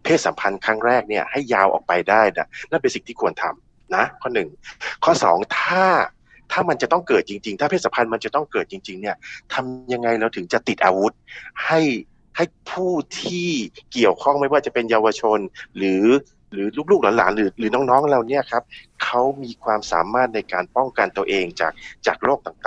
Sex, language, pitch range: male, Thai, 105-145 Hz